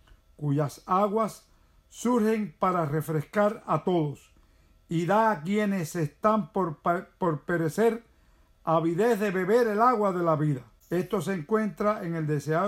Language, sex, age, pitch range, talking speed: Spanish, male, 50-69, 155-215 Hz, 135 wpm